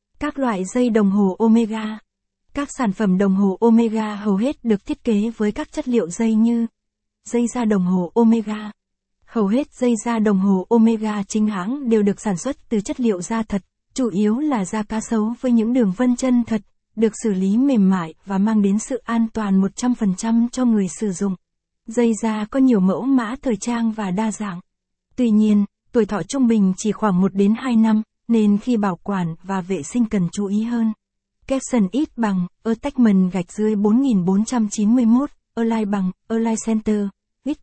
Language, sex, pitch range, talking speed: Vietnamese, female, 200-235 Hz, 190 wpm